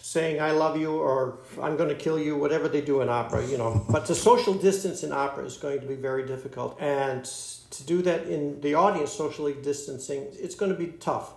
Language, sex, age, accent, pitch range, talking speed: English, male, 60-79, American, 135-165 Hz, 225 wpm